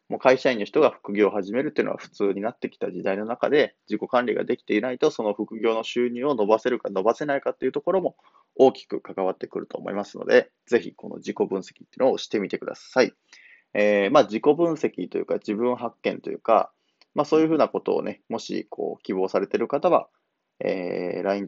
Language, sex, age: Japanese, male, 20-39